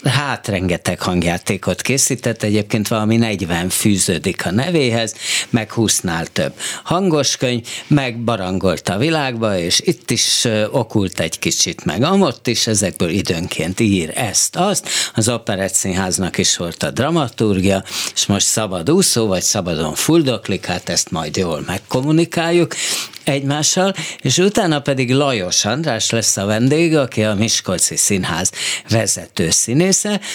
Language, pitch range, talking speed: Hungarian, 95-145 Hz, 125 wpm